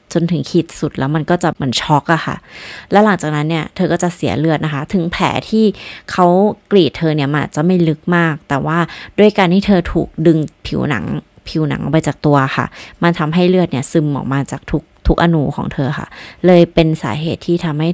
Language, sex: Thai, female